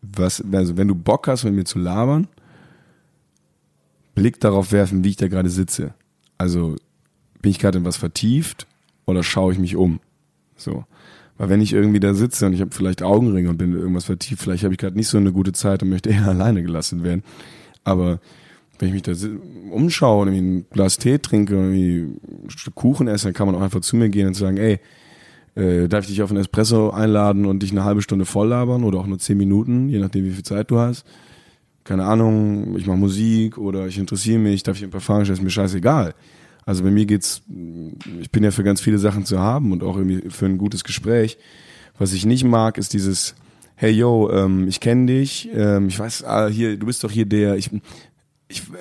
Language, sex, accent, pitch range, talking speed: German, male, German, 95-110 Hz, 220 wpm